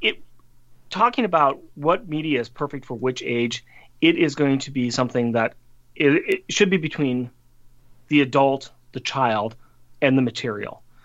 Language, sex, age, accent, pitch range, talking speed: English, male, 30-49, American, 120-160 Hz, 150 wpm